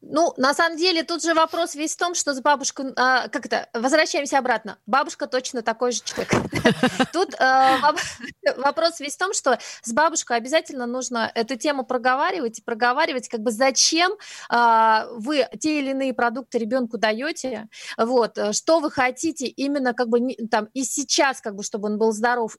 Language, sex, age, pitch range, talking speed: Russian, female, 30-49, 235-295 Hz, 165 wpm